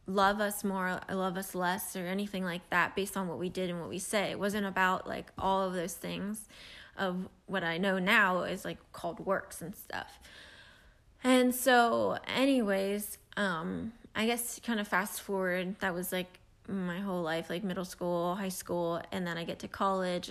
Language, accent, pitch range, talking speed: English, American, 185-215 Hz, 190 wpm